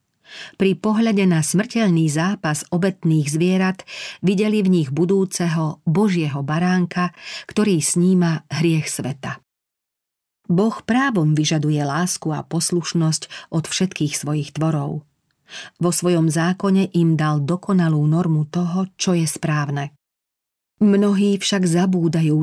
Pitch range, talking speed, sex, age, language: 155-185 Hz, 110 wpm, female, 40-59, Slovak